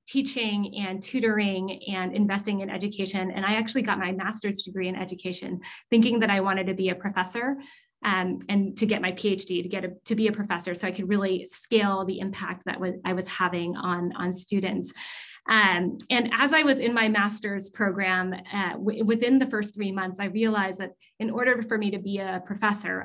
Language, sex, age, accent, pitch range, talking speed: English, female, 20-39, American, 185-215 Hz, 205 wpm